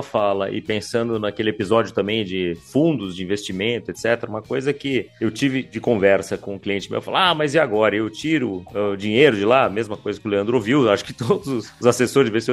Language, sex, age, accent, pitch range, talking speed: Portuguese, male, 30-49, Brazilian, 110-145 Hz, 215 wpm